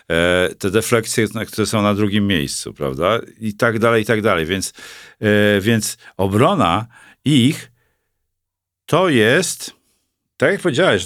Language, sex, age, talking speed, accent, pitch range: Polish, male, 50-69, 125 wpm, native, 95-120 Hz